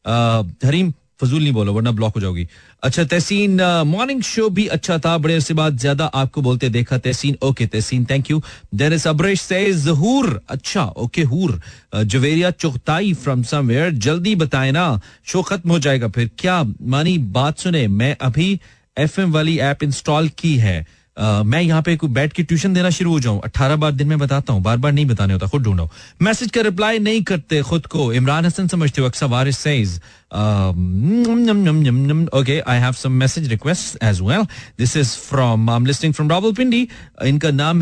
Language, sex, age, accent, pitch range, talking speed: Hindi, male, 30-49, native, 115-170 Hz, 145 wpm